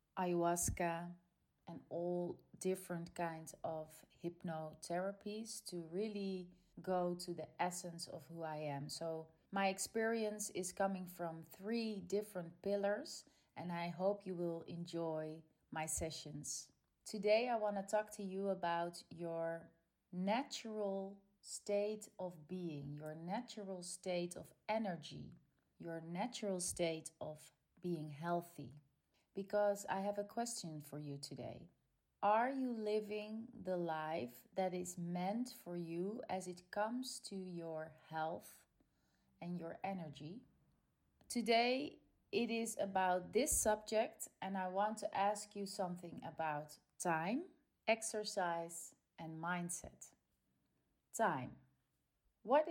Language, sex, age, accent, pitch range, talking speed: Dutch, female, 30-49, Dutch, 170-210 Hz, 120 wpm